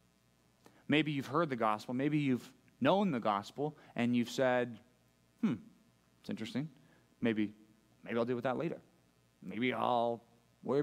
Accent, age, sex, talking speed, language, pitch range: American, 20-39, male, 145 wpm, English, 110-145 Hz